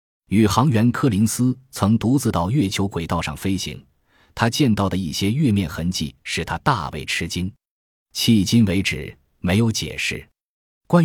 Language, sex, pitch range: Chinese, male, 85-115 Hz